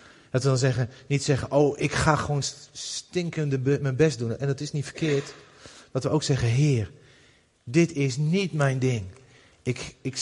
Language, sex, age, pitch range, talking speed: Dutch, male, 40-59, 115-145 Hz, 190 wpm